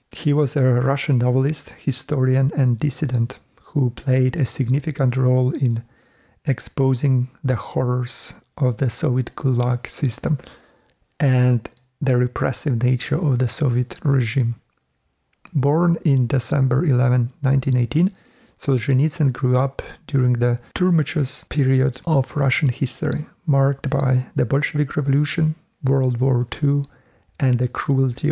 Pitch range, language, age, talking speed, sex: 125-145 Hz, Ukrainian, 50-69, 120 wpm, male